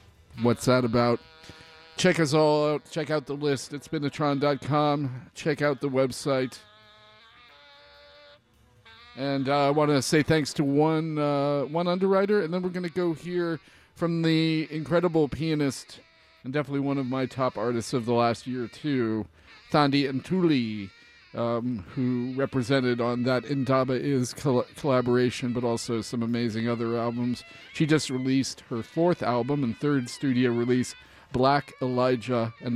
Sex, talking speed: male, 150 wpm